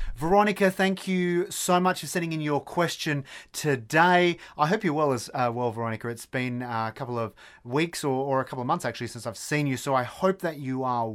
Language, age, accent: English, 30-49, Australian